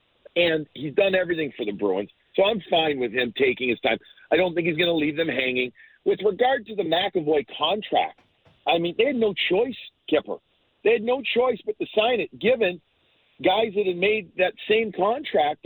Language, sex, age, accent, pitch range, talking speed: English, male, 50-69, American, 145-205 Hz, 205 wpm